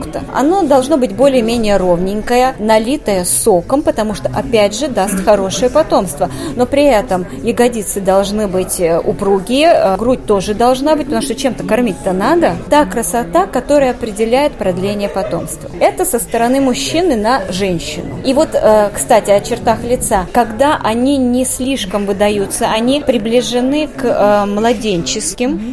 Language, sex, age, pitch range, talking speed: Russian, female, 20-39, 200-260 Hz, 135 wpm